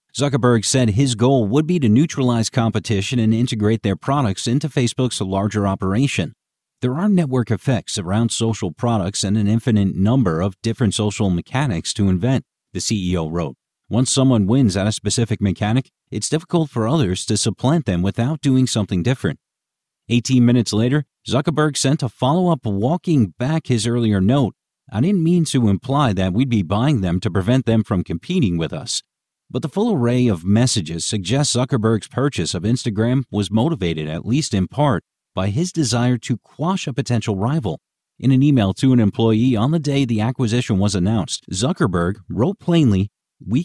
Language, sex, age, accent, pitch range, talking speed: English, male, 40-59, American, 105-135 Hz, 175 wpm